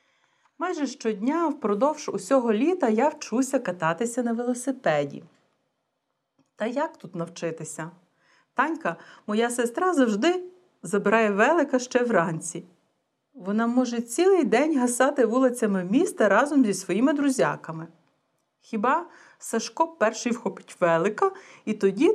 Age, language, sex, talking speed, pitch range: 40-59, Bulgarian, female, 110 wpm, 195-295 Hz